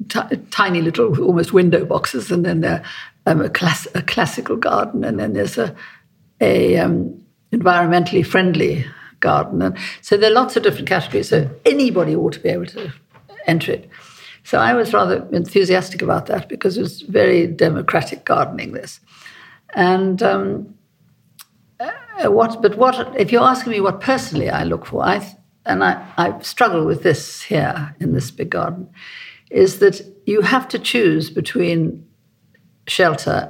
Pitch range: 170-245 Hz